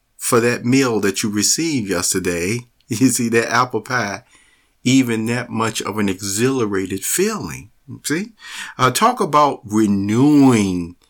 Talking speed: 130 wpm